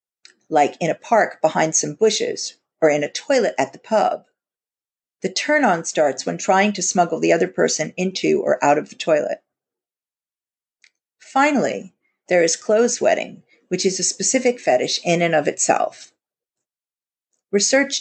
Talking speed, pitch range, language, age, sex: 150 wpm, 170-235 Hz, English, 40-59, female